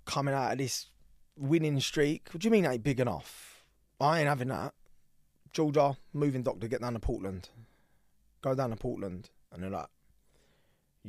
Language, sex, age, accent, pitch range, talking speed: English, male, 20-39, British, 95-125 Hz, 170 wpm